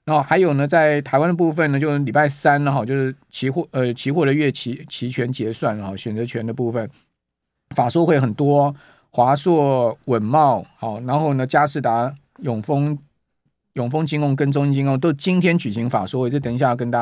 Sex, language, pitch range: male, Chinese, 120-150 Hz